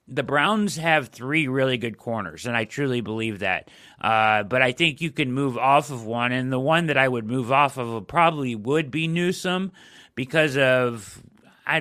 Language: English